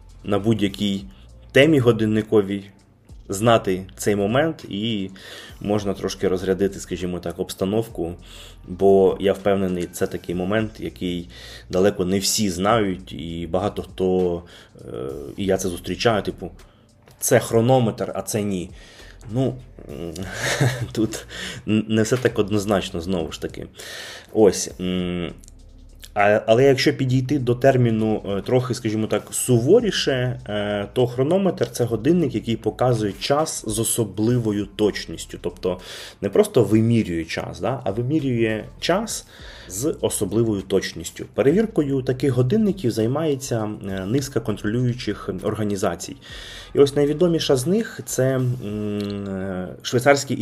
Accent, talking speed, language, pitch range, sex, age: native, 110 wpm, Ukrainian, 95-125 Hz, male, 20-39